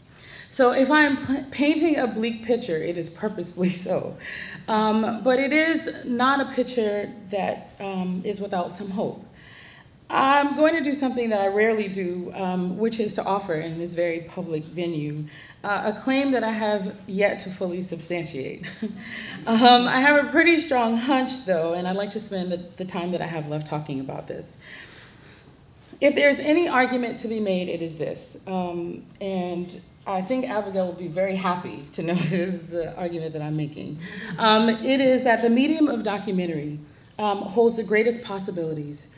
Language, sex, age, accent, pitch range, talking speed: English, female, 30-49, American, 175-230 Hz, 175 wpm